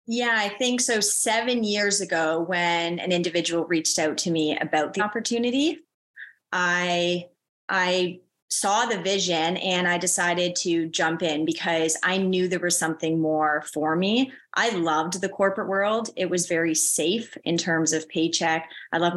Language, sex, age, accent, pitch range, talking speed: English, female, 20-39, American, 165-195 Hz, 165 wpm